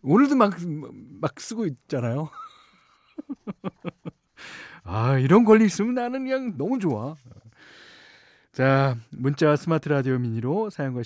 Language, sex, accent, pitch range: Korean, male, native, 110-160 Hz